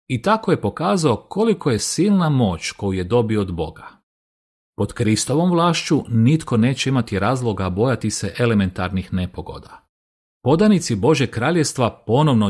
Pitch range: 105-145 Hz